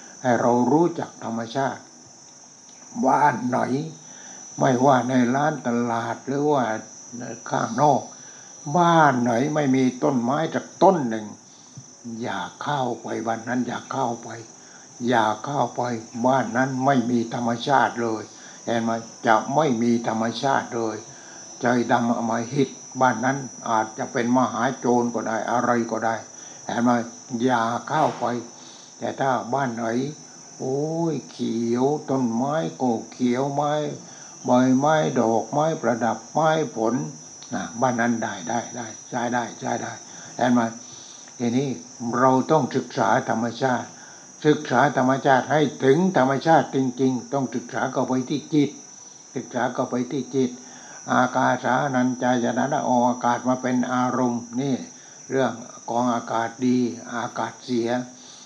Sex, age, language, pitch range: male, 60-79, English, 115-135 Hz